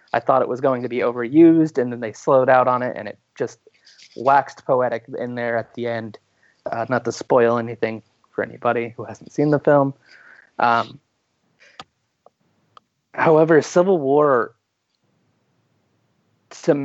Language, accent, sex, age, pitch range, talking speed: English, American, male, 30-49, 120-155 Hz, 150 wpm